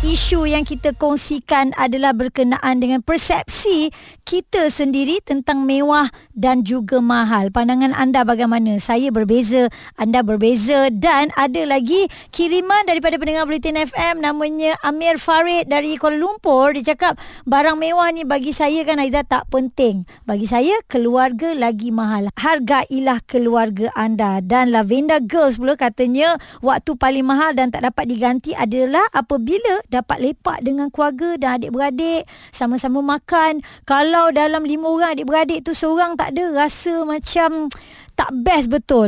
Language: Malay